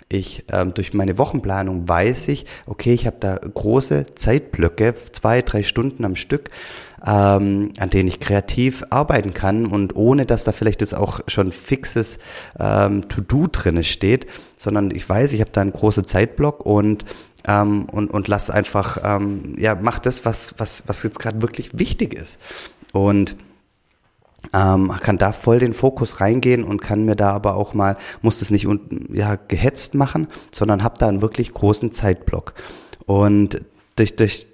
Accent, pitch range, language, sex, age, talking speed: German, 100-115 Hz, German, male, 30-49, 170 wpm